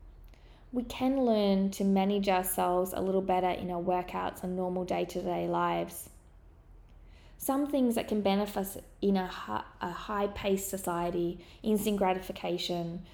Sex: female